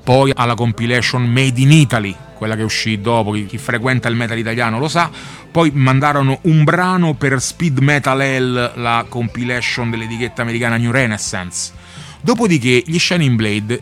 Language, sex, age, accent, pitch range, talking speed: Italian, male, 30-49, native, 115-155 Hz, 150 wpm